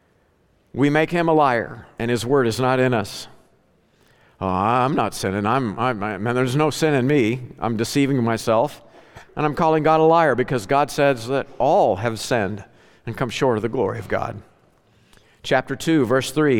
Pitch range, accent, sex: 105-140 Hz, American, male